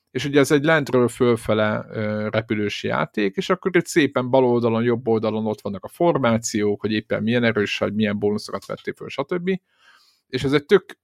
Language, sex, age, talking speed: Hungarian, male, 50-69, 185 wpm